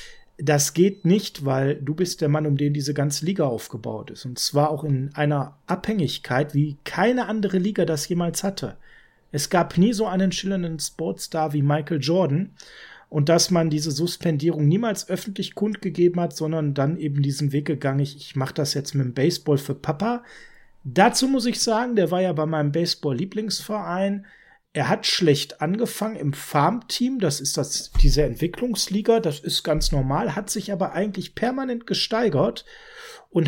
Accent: German